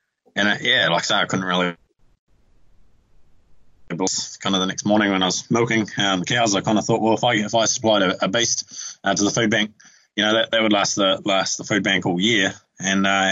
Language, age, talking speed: English, 20-39, 245 wpm